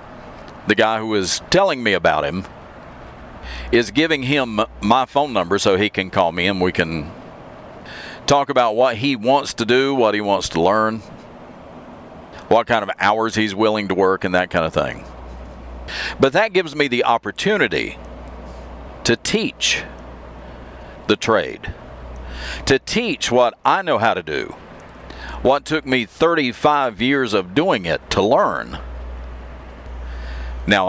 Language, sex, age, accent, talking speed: English, male, 50-69, American, 150 wpm